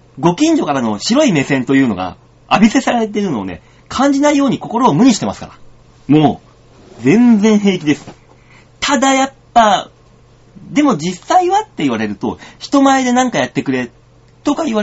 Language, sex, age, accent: Japanese, male, 30-49, native